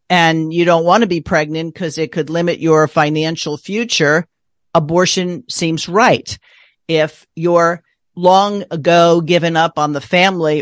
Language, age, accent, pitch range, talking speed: English, 50-69, American, 155-180 Hz, 145 wpm